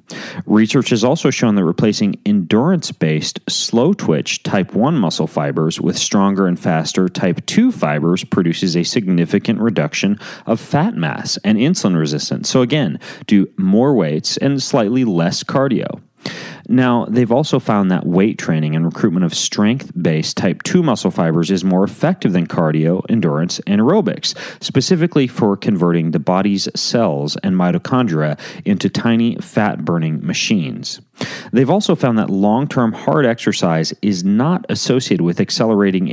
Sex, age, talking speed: male, 30-49, 140 wpm